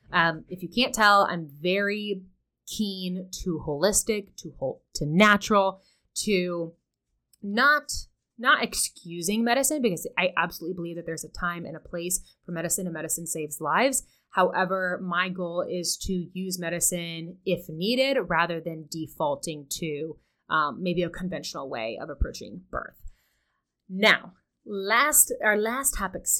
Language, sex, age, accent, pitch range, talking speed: English, female, 20-39, American, 165-210 Hz, 140 wpm